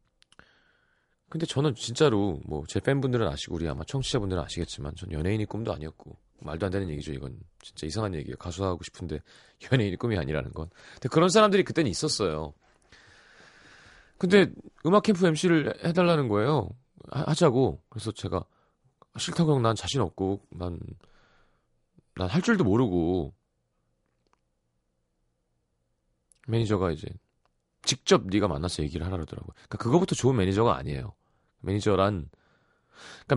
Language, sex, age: Korean, male, 30-49